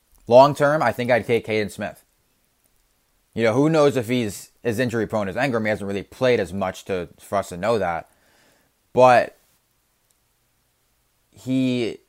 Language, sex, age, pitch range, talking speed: English, male, 20-39, 105-140 Hz, 165 wpm